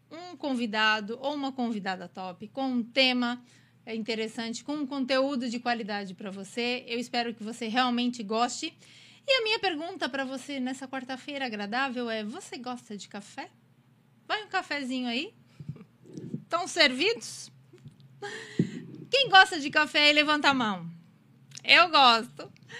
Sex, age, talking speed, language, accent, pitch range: female, 20-39, 135 wpm, Portuguese, Brazilian, 225-310 Hz